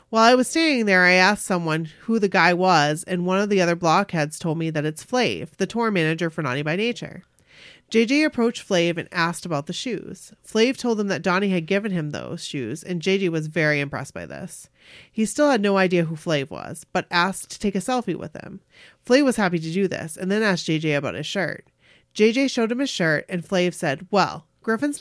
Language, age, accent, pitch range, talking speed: English, 30-49, American, 160-205 Hz, 225 wpm